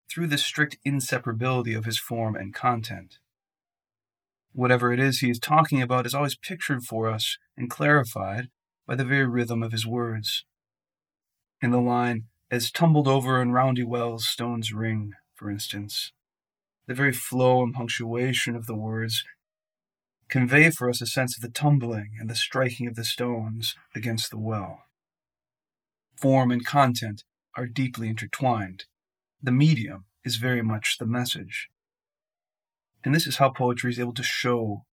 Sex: male